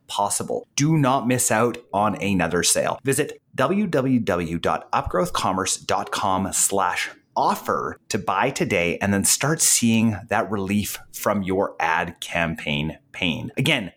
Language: English